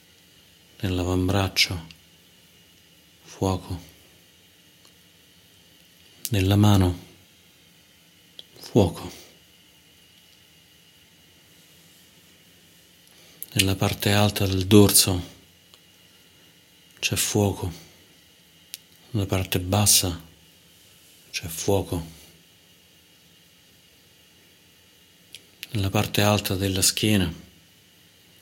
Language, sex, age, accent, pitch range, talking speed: Italian, male, 50-69, native, 90-100 Hz, 45 wpm